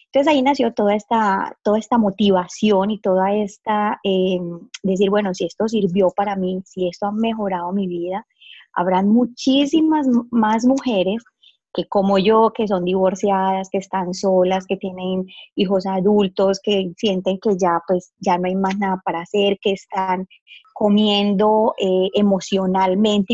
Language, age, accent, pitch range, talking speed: Spanish, 20-39, Colombian, 185-225 Hz, 150 wpm